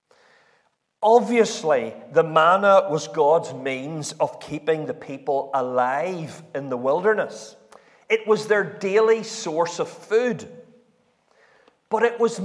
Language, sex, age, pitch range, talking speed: English, male, 50-69, 175-275 Hz, 115 wpm